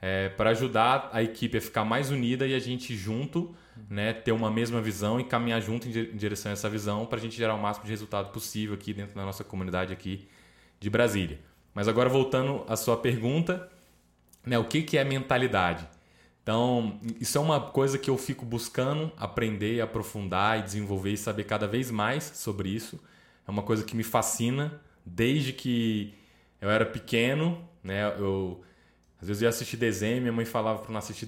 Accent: Brazilian